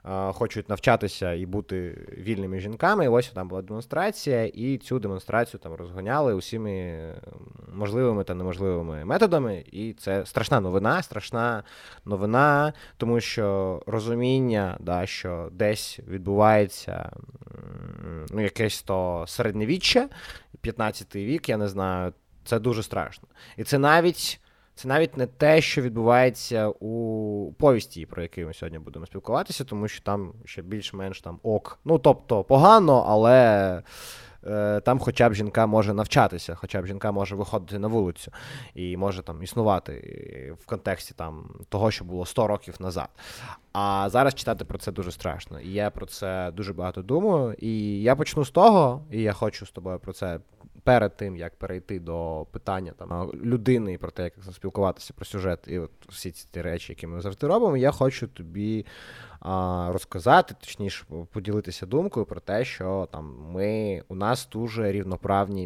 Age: 20-39